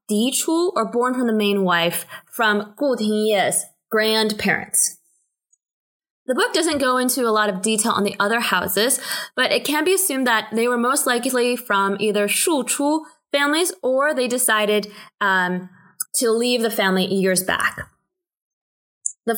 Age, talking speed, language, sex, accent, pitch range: 20-39, 150 wpm, English, female, American, 195-255 Hz